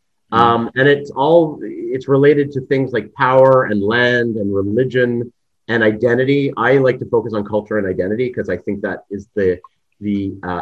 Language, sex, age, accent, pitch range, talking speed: English, male, 30-49, American, 100-130 Hz, 180 wpm